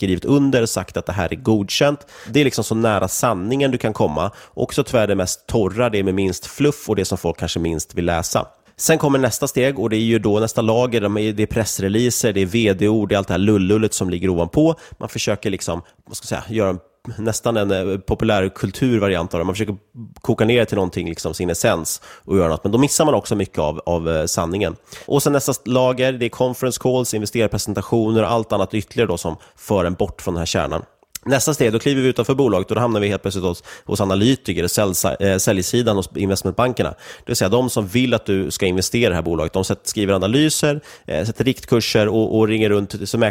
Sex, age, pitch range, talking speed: male, 30-49, 95-120 Hz, 225 wpm